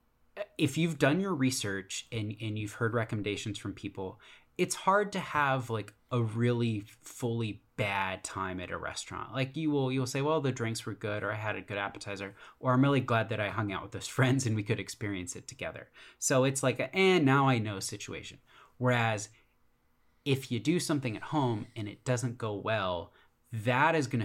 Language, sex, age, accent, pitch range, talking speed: English, male, 30-49, American, 105-135 Hz, 210 wpm